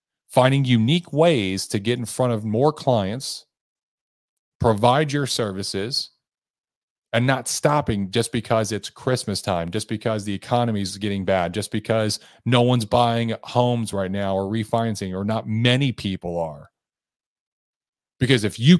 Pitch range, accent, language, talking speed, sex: 95-125 Hz, American, English, 145 wpm, male